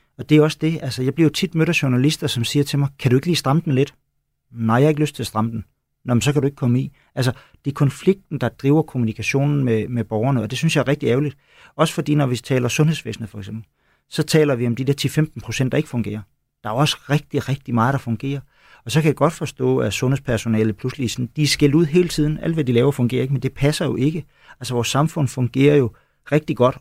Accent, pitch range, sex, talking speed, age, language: native, 115-145 Hz, male, 260 wpm, 40-59, Danish